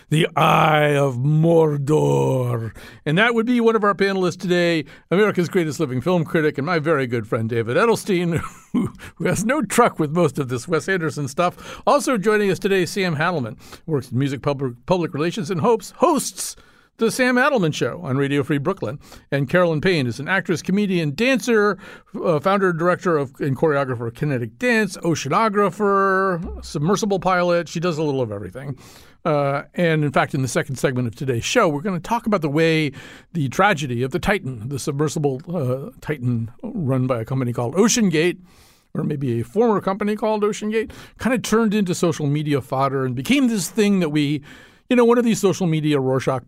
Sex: male